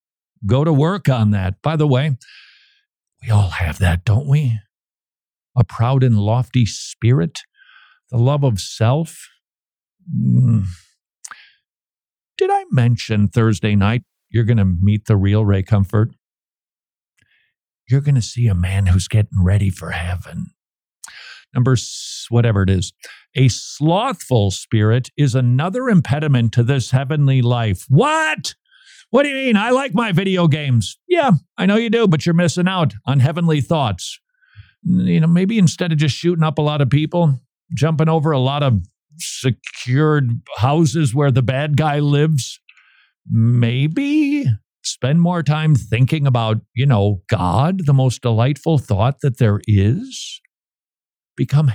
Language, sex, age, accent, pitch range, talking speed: English, male, 50-69, American, 115-160 Hz, 145 wpm